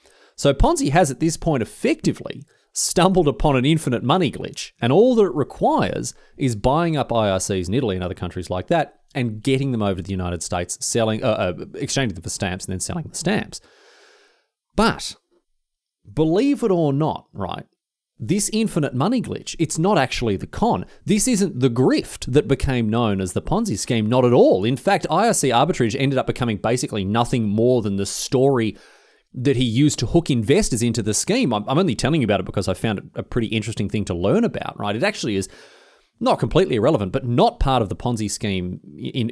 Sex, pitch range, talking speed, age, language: male, 110-155 Hz, 200 wpm, 30-49, English